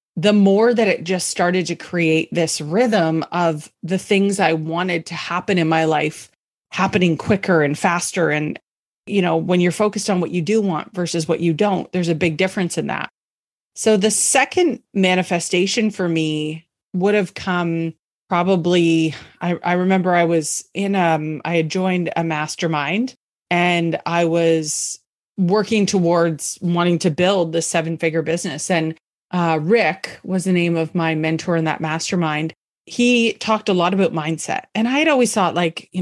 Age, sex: 30-49, female